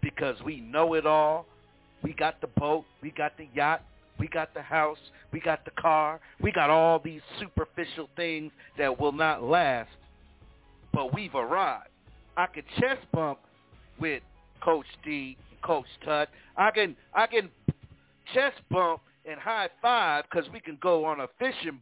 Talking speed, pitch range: 160 wpm, 140-175 Hz